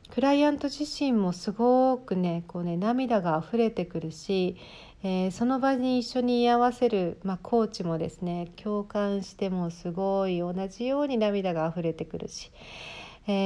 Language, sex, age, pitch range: Japanese, female, 40-59, 175-220 Hz